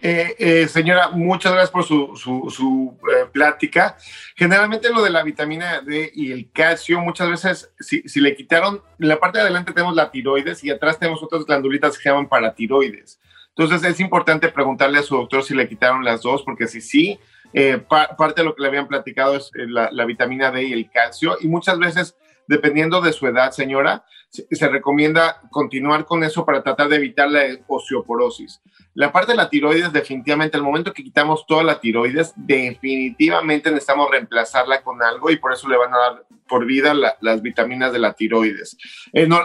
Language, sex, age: Spanish, male, 40-59